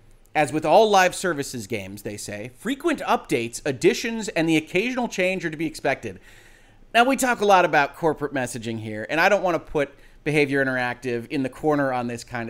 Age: 30-49